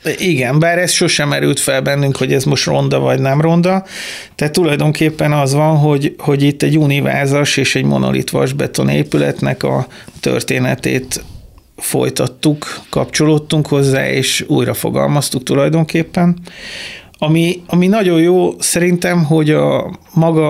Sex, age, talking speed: male, 30-49, 130 wpm